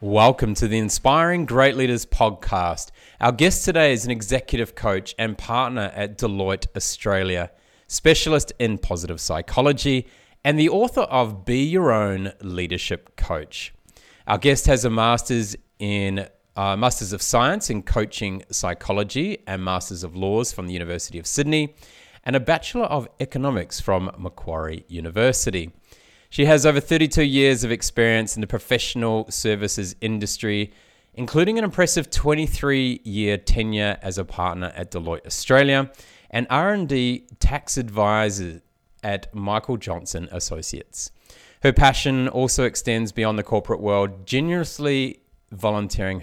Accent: Australian